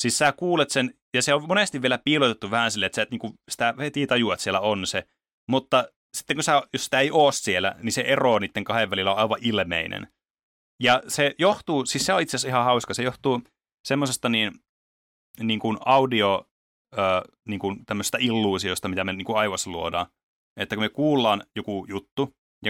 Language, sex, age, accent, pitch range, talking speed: Finnish, male, 30-49, native, 95-125 Hz, 190 wpm